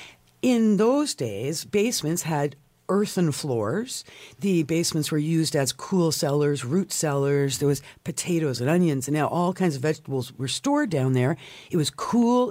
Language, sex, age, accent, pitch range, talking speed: English, female, 50-69, American, 140-180 Hz, 165 wpm